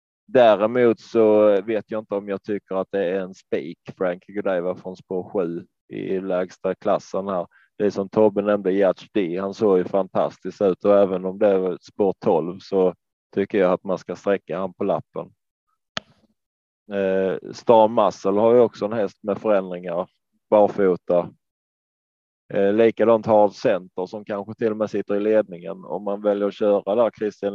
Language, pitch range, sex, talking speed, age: Swedish, 95-105 Hz, male, 175 wpm, 20-39